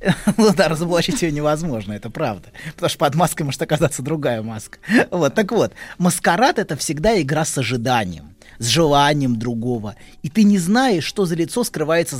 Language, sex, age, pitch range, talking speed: Russian, male, 20-39, 135-195 Hz, 165 wpm